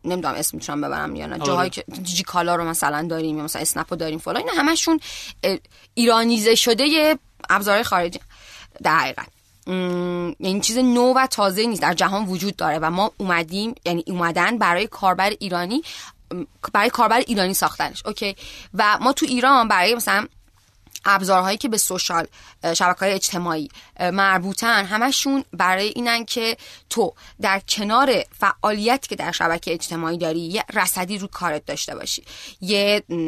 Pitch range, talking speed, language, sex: 175-210 Hz, 150 wpm, Persian, female